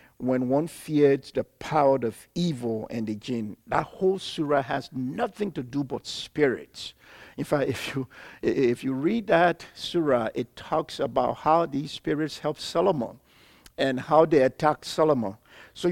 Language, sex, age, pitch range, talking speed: English, male, 60-79, 125-165 Hz, 155 wpm